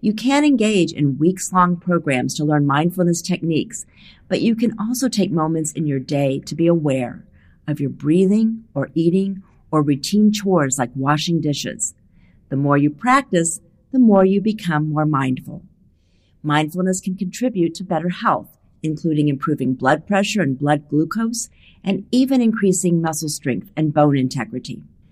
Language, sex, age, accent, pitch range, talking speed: English, female, 50-69, American, 150-195 Hz, 155 wpm